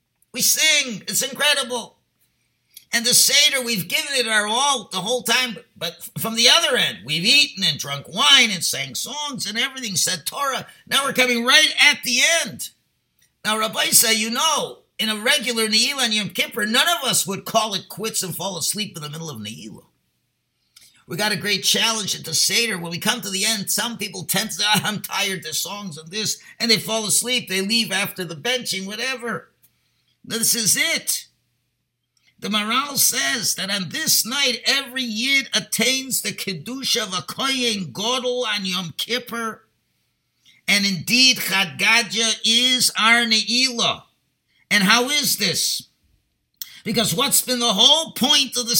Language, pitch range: English, 190-245 Hz